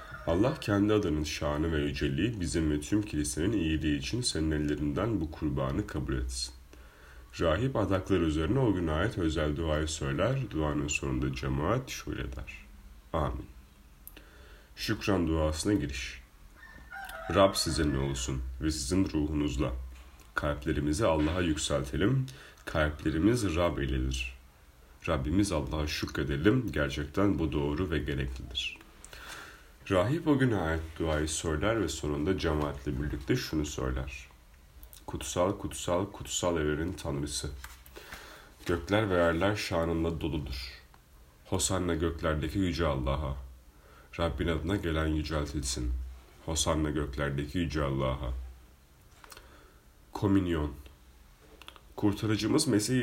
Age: 40-59